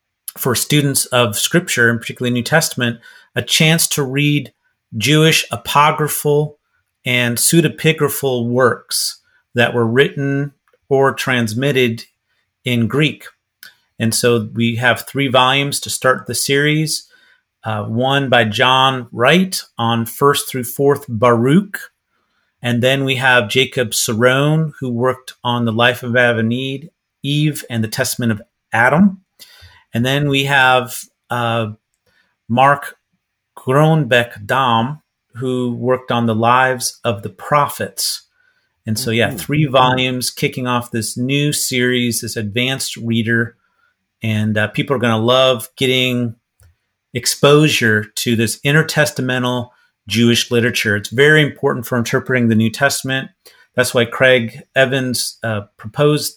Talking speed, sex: 125 wpm, male